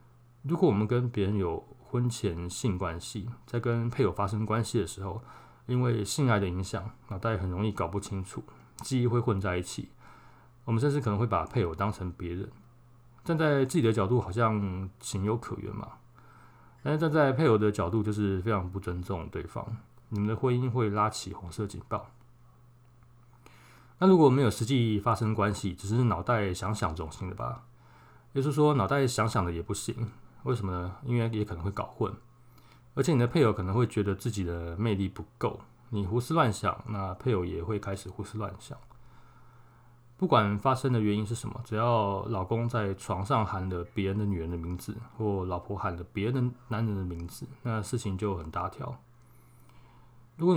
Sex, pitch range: male, 100-120 Hz